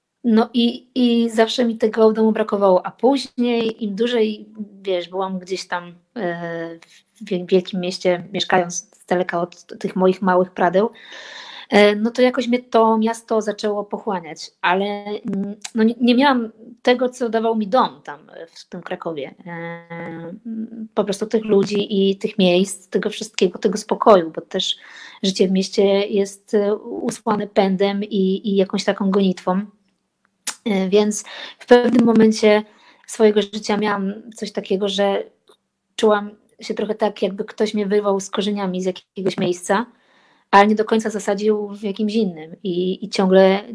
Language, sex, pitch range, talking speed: Polish, female, 195-225 Hz, 145 wpm